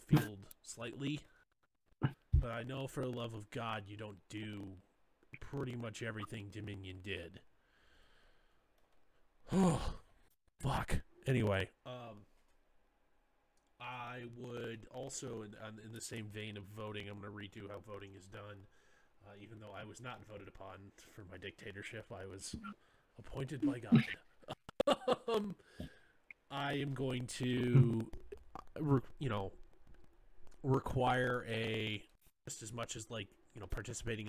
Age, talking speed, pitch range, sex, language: 20-39, 130 wpm, 105-125 Hz, male, English